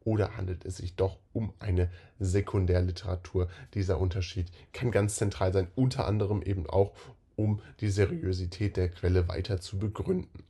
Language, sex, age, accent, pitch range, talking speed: German, male, 10-29, German, 95-120 Hz, 150 wpm